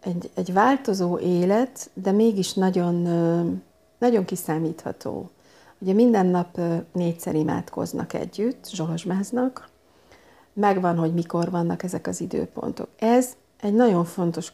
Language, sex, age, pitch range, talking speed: Hungarian, female, 50-69, 165-210 Hz, 110 wpm